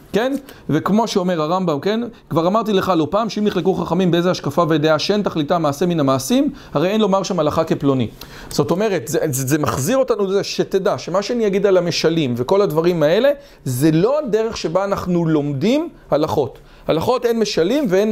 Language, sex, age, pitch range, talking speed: English, male, 40-59, 155-220 Hz, 180 wpm